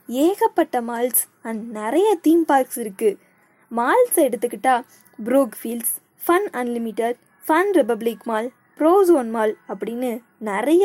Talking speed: 115 wpm